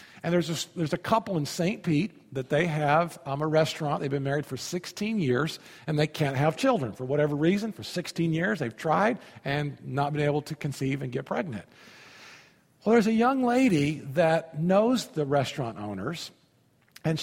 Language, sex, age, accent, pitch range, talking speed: English, male, 50-69, American, 150-205 Hz, 185 wpm